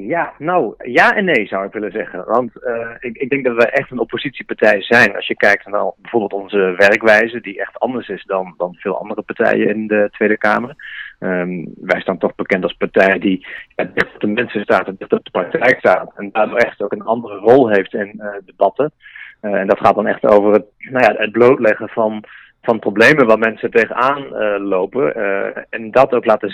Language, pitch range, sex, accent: Dutch, 100-115 Hz, male, Dutch